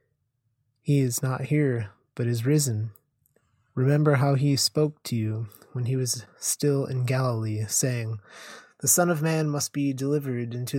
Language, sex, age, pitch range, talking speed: English, male, 20-39, 115-140 Hz, 155 wpm